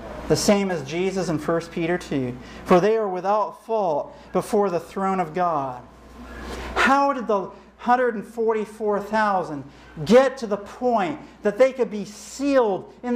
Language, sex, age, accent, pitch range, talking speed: English, male, 50-69, American, 195-250 Hz, 145 wpm